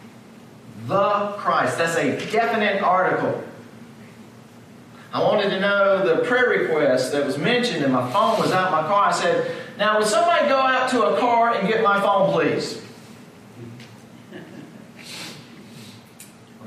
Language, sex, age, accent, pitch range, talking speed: English, male, 40-59, American, 170-240 Hz, 145 wpm